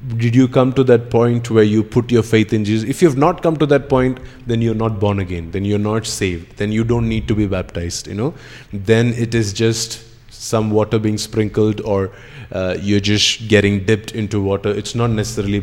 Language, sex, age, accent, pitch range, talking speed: English, male, 20-39, Indian, 100-120 Hz, 225 wpm